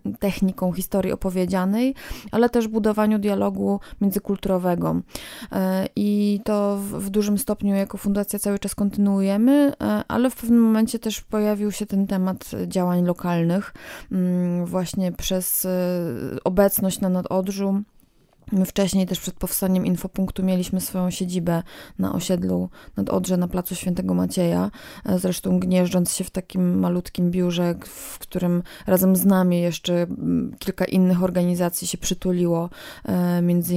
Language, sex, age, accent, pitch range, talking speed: Polish, female, 20-39, native, 175-195 Hz, 125 wpm